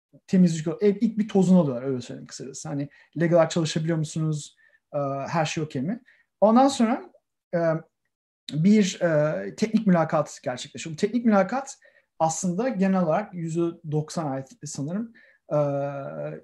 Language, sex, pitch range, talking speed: Turkish, male, 150-200 Hz, 135 wpm